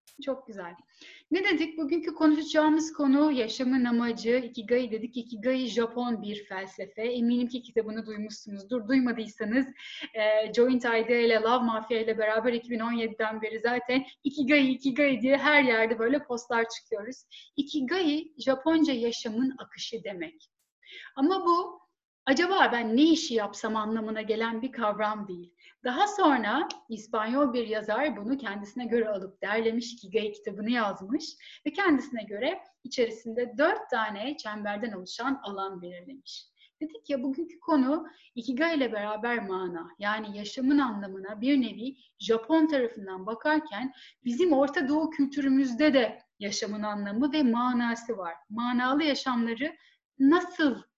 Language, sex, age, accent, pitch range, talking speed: English, female, 10-29, Turkish, 220-285 Hz, 125 wpm